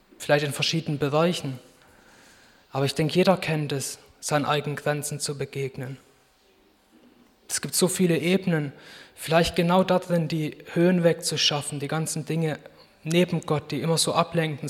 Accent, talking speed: German, 145 wpm